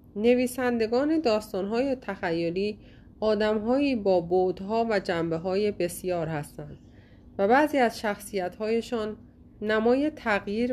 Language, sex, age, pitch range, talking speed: Persian, female, 30-49, 175-235 Hz, 90 wpm